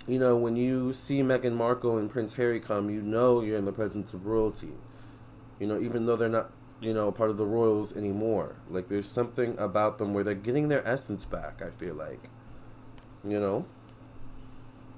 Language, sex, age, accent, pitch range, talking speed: English, male, 20-39, American, 110-125 Hz, 190 wpm